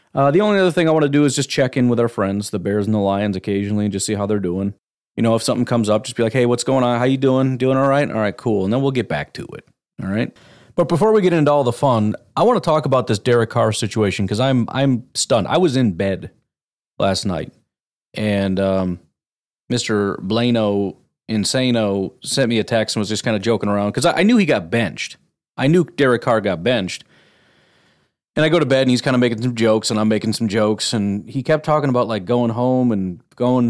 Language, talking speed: English, 255 wpm